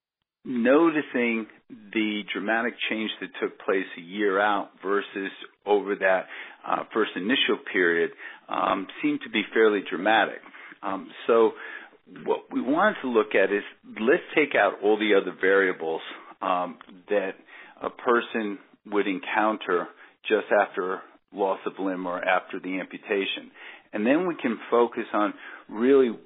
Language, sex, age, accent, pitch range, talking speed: English, male, 50-69, American, 95-150 Hz, 140 wpm